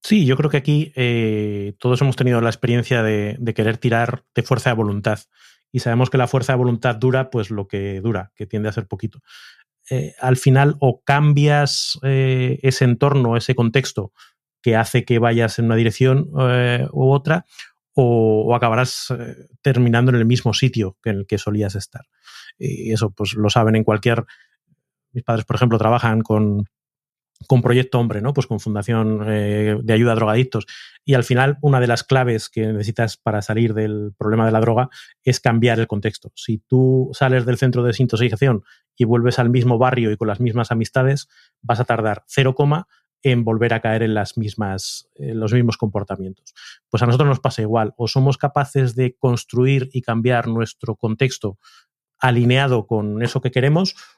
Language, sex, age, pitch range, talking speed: Spanish, male, 30-49, 110-130 Hz, 185 wpm